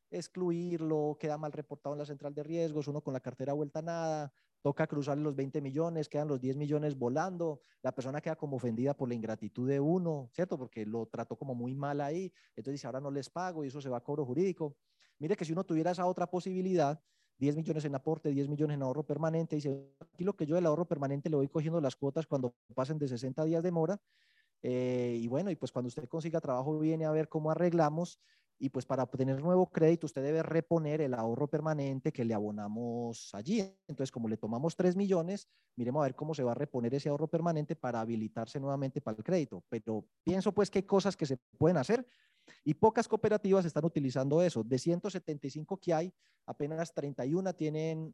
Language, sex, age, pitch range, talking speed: Spanish, male, 30-49, 135-170 Hz, 210 wpm